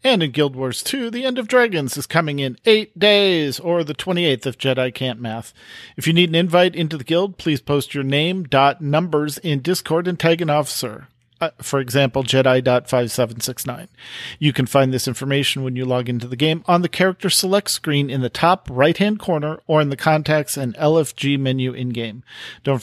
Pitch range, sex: 135-165 Hz, male